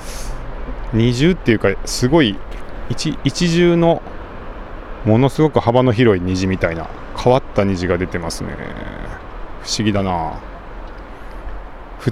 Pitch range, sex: 90-115 Hz, male